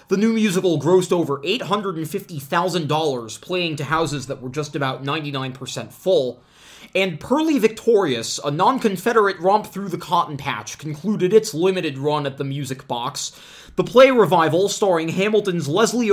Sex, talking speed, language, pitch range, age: male, 145 wpm, English, 140-185 Hz, 20-39